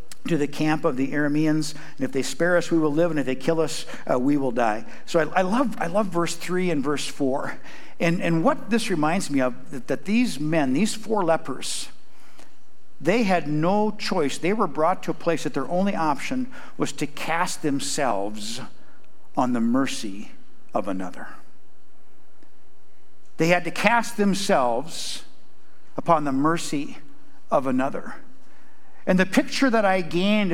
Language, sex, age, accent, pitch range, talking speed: English, male, 60-79, American, 155-215 Hz, 170 wpm